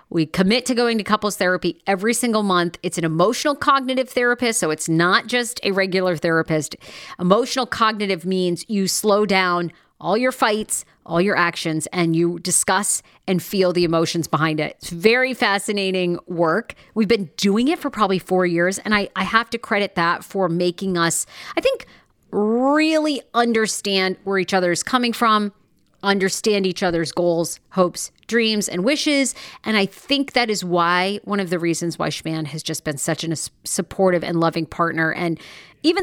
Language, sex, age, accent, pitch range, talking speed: English, female, 40-59, American, 170-220 Hz, 175 wpm